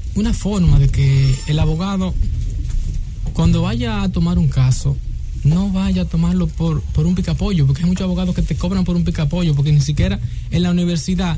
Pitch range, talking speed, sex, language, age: 130-185 Hz, 190 wpm, male, English, 20-39